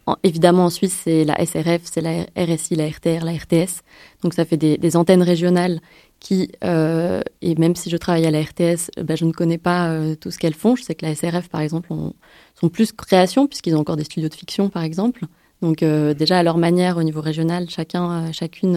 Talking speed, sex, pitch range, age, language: 230 wpm, female, 165-185 Hz, 20-39, French